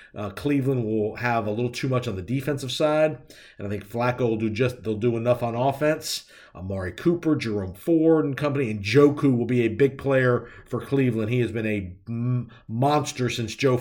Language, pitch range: English, 110-135 Hz